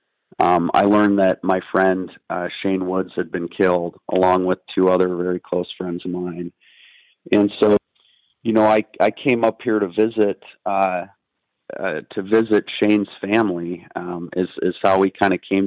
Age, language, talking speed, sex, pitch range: 40-59, English, 175 wpm, male, 90-100 Hz